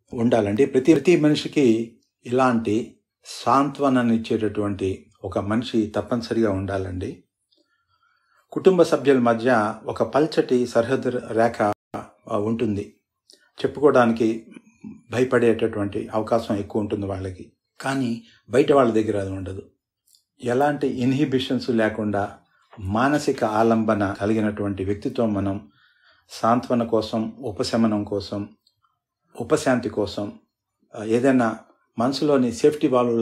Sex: male